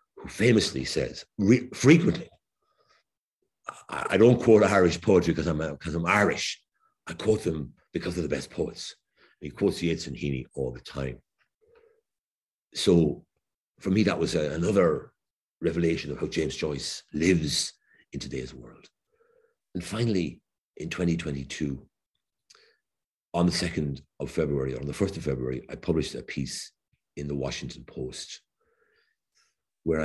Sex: male